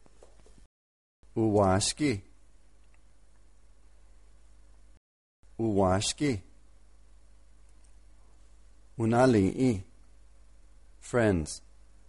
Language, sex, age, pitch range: English, male, 50-69, 75-110 Hz